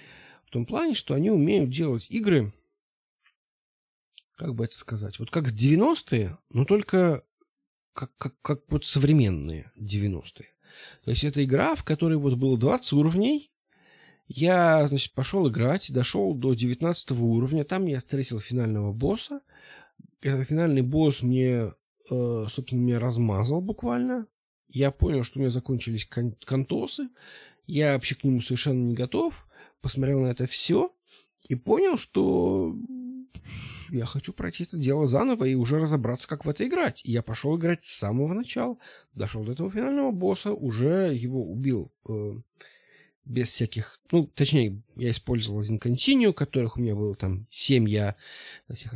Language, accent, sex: Russian, native, male